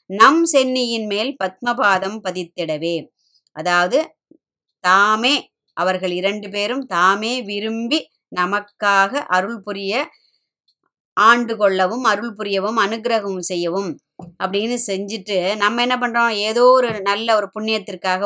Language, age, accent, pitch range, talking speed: Tamil, 20-39, native, 190-235 Hz, 100 wpm